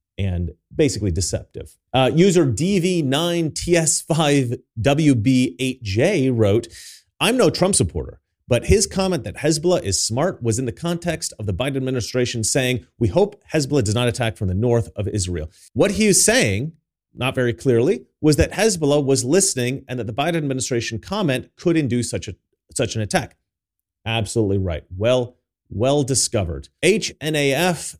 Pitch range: 105-150 Hz